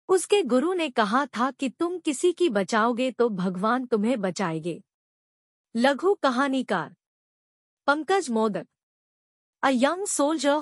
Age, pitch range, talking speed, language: 50-69, 225-295 Hz, 120 wpm, Hindi